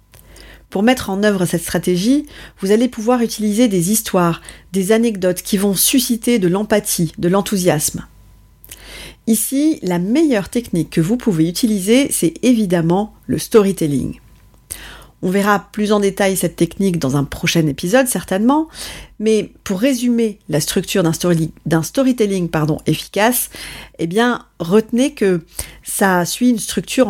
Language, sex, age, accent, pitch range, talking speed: French, female, 40-59, French, 175-235 Hz, 140 wpm